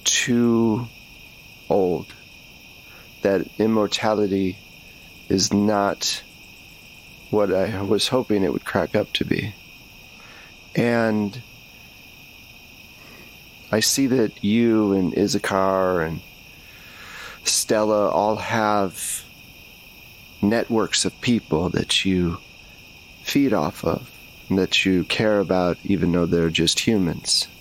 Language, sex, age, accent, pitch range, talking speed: English, male, 40-59, American, 90-105 Hz, 95 wpm